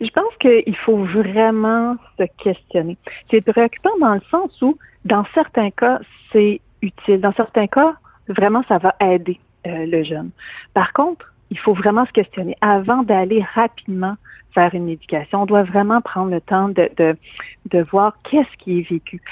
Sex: female